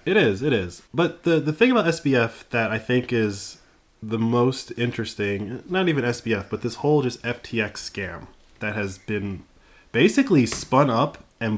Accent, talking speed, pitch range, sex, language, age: American, 170 wpm, 100-135 Hz, male, English, 20-39